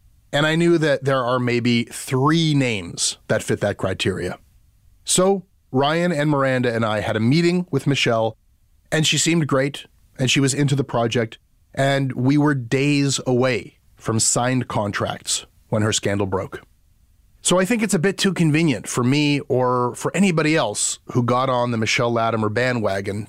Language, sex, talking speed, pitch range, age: English, male, 175 wpm, 105-145 Hz, 30-49